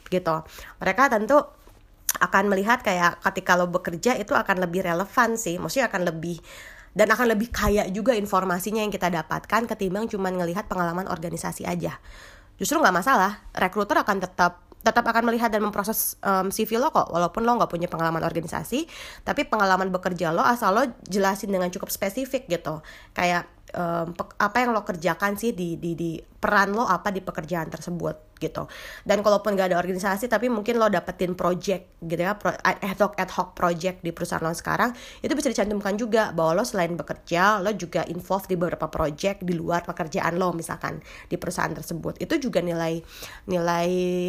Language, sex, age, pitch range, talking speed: Indonesian, female, 20-39, 175-210 Hz, 170 wpm